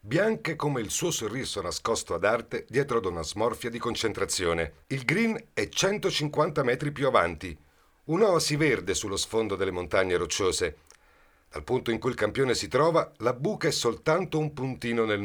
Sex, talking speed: male, 170 wpm